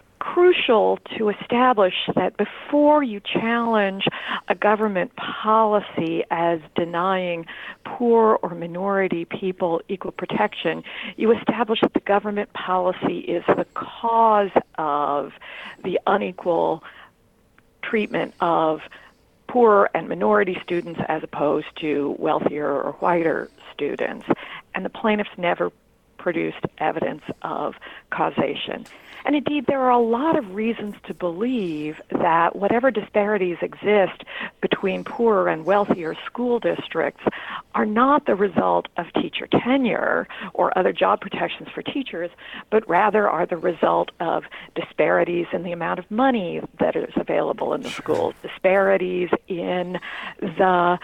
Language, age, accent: English, 50-69, American